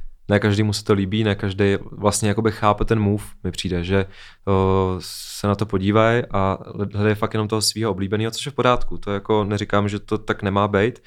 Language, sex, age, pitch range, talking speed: Czech, male, 20-39, 100-110 Hz, 205 wpm